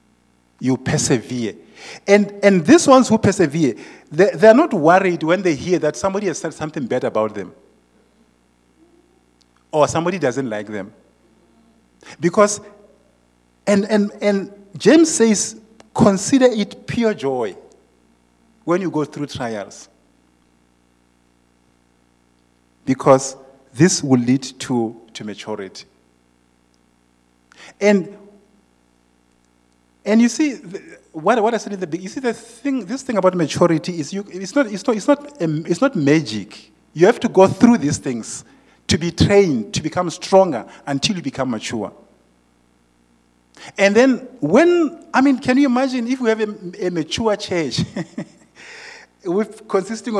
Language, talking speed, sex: English, 120 wpm, male